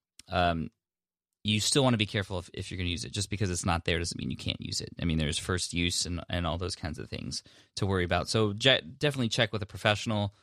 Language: English